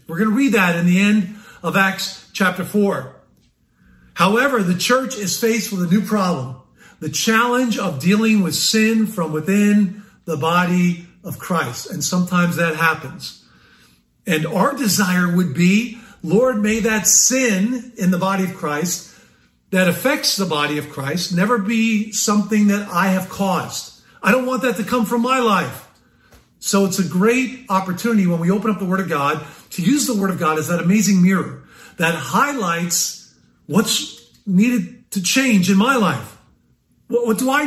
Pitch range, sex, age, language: 170-215 Hz, male, 50-69, English